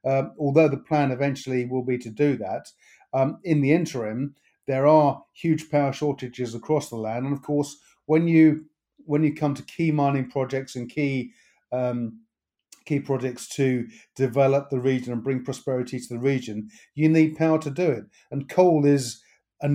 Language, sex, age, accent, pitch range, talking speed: English, male, 50-69, British, 130-145 Hz, 180 wpm